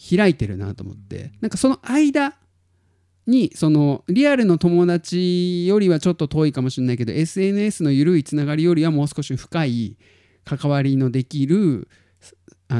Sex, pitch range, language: male, 105-175 Hz, Japanese